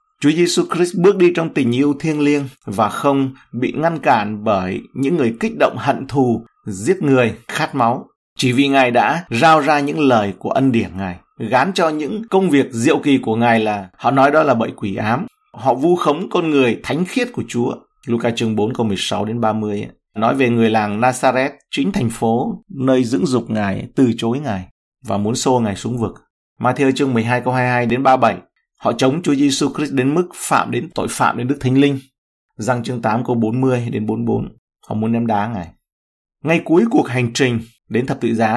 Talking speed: 210 wpm